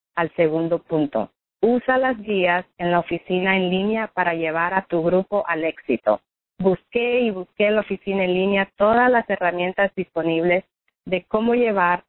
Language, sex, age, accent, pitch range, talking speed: Spanish, female, 40-59, American, 175-210 Hz, 165 wpm